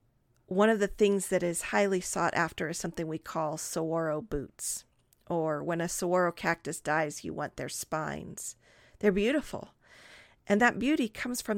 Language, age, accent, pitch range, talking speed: English, 40-59, American, 175-220 Hz, 165 wpm